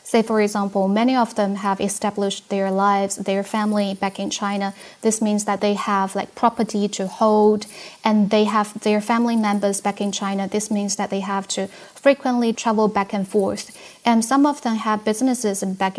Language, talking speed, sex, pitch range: English, 190 wpm, female, 195-225 Hz